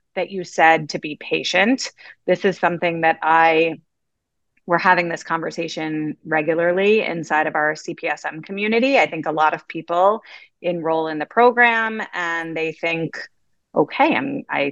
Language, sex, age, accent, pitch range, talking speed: English, female, 30-49, American, 165-220 Hz, 145 wpm